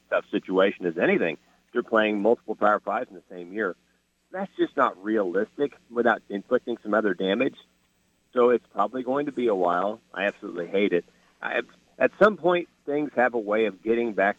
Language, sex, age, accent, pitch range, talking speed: English, male, 50-69, American, 90-115 Hz, 190 wpm